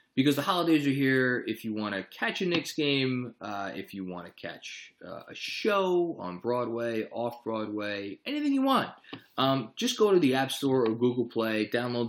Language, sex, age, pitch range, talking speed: English, male, 20-39, 100-135 Hz, 195 wpm